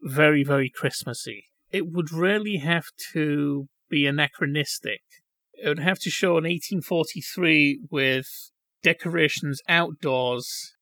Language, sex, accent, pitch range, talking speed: English, male, British, 140-180 Hz, 110 wpm